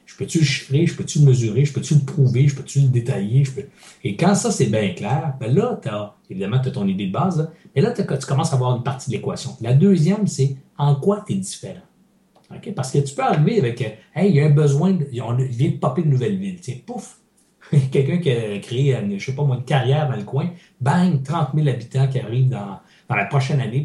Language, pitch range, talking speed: French, 125-170 Hz, 260 wpm